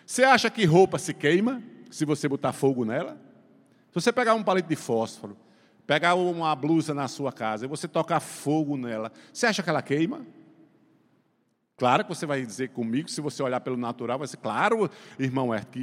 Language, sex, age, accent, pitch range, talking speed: Portuguese, male, 50-69, Brazilian, 125-180 Hz, 195 wpm